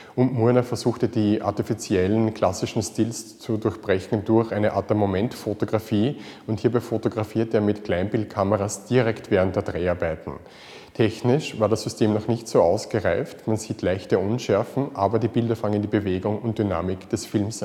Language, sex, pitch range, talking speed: German, male, 105-115 Hz, 155 wpm